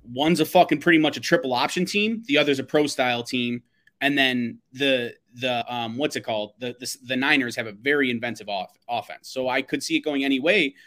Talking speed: 225 wpm